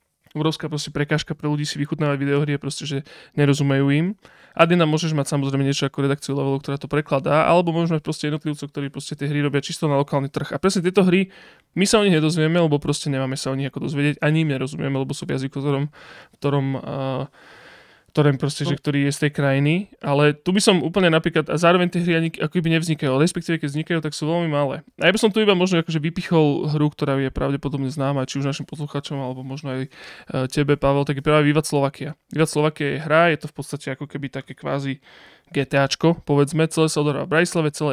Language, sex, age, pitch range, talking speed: Slovak, male, 20-39, 140-155 Hz, 215 wpm